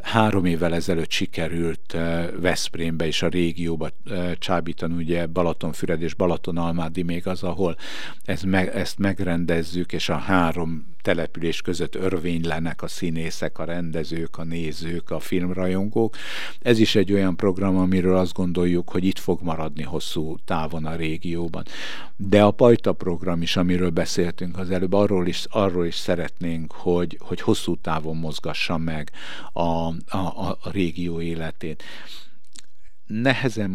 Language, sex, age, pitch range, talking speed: Hungarian, male, 60-79, 85-95 Hz, 135 wpm